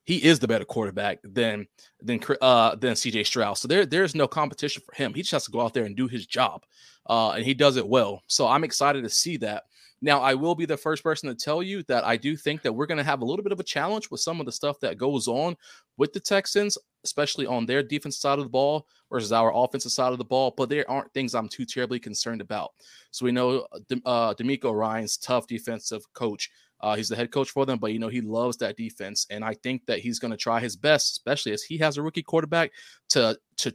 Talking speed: 260 wpm